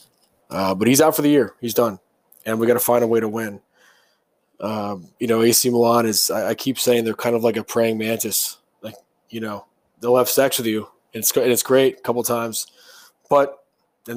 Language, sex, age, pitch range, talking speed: English, male, 20-39, 105-120 Hz, 225 wpm